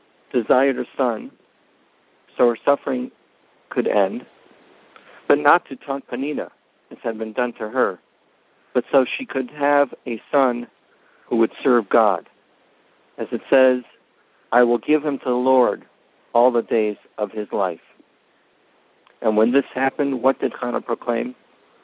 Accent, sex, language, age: American, male, English, 60-79